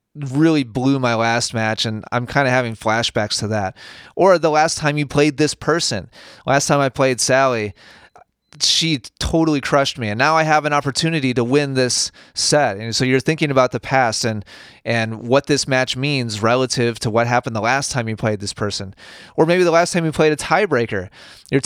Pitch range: 115-145 Hz